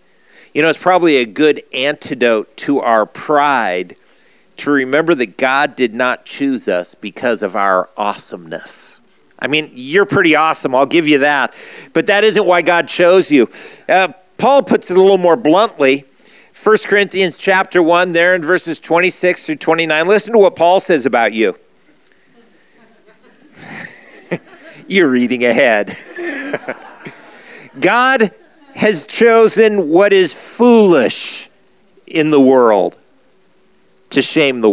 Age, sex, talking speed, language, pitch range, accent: 50-69, male, 135 wpm, English, 120-185 Hz, American